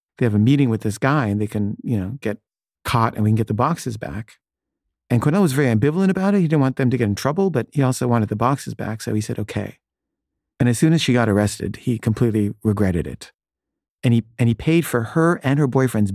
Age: 40-59